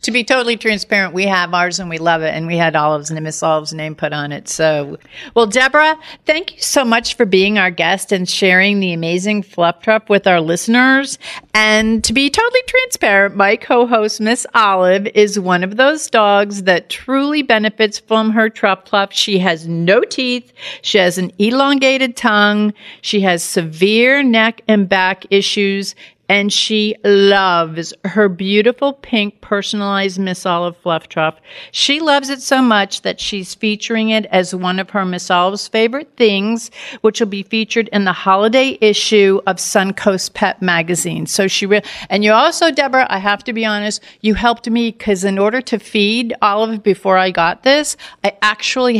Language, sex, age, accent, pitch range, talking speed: English, female, 50-69, American, 190-230 Hz, 180 wpm